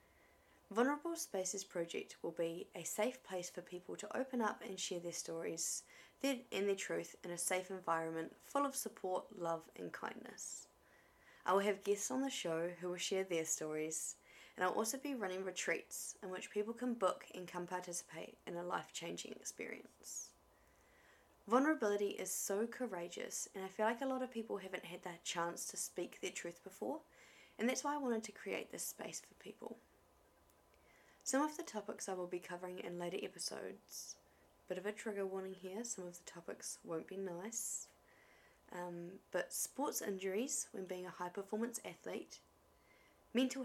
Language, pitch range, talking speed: English, 175-220 Hz, 175 wpm